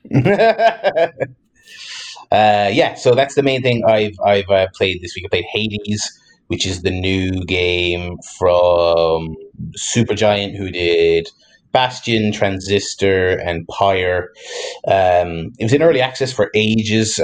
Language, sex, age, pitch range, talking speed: English, male, 30-49, 90-110 Hz, 130 wpm